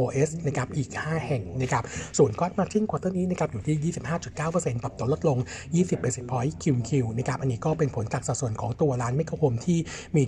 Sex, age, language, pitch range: male, 60-79, Thai, 125-155 Hz